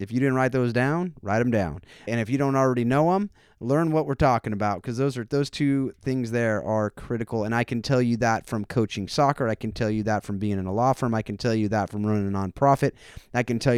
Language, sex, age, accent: English, male, 30-49, American